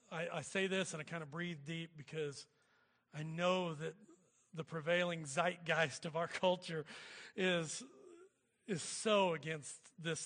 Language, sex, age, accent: English, male, 40-59, American